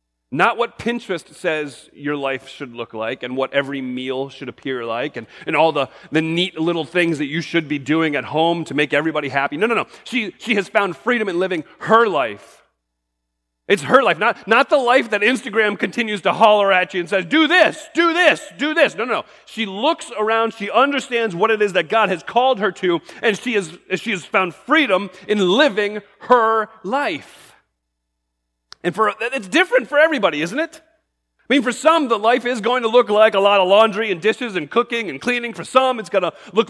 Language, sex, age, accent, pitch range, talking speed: English, male, 30-49, American, 175-245 Hz, 215 wpm